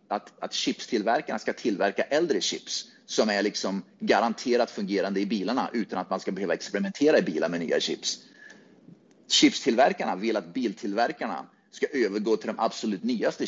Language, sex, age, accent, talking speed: Swedish, male, 30-49, native, 155 wpm